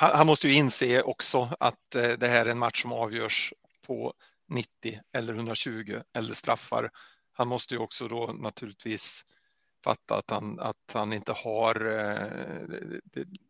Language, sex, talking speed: Swedish, male, 145 wpm